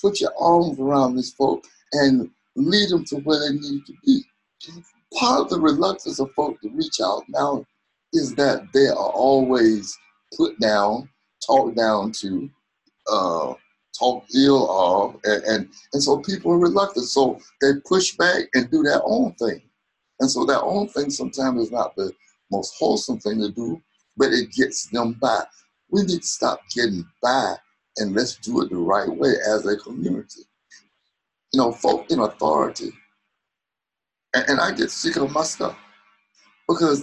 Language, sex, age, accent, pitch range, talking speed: English, male, 60-79, American, 115-185 Hz, 165 wpm